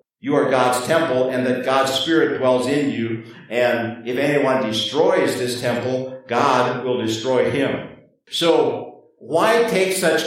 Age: 50-69